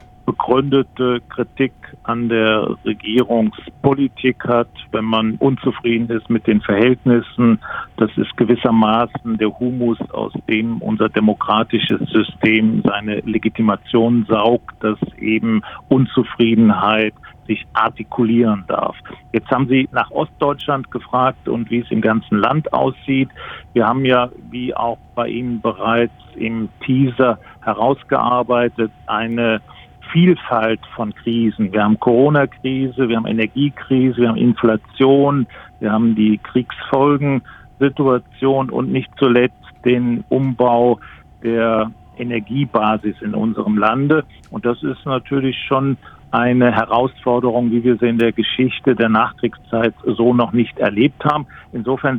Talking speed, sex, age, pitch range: 120 wpm, male, 50-69, 110-130 Hz